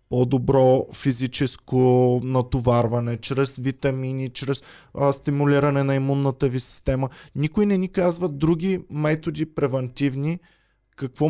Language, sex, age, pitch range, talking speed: Bulgarian, male, 20-39, 120-150 Hz, 105 wpm